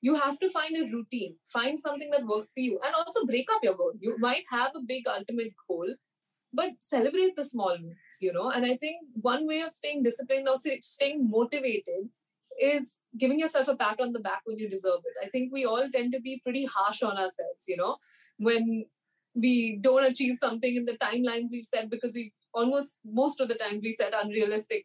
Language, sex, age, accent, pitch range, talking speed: English, female, 20-39, Indian, 225-280 Hz, 210 wpm